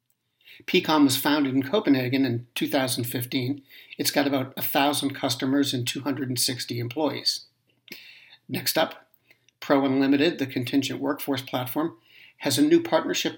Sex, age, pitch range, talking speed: male, 60-79, 135-155 Hz, 120 wpm